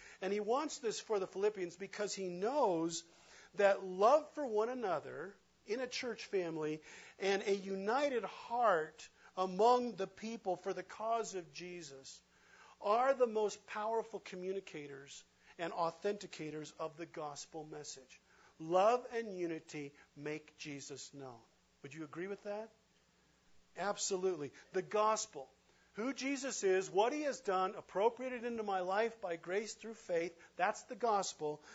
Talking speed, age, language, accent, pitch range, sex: 140 wpm, 50-69, English, American, 155-215 Hz, male